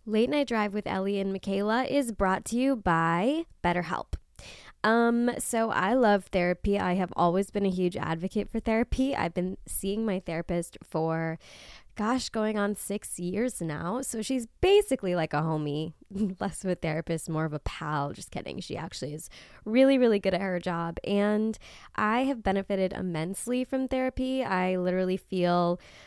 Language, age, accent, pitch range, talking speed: English, 20-39, American, 175-230 Hz, 170 wpm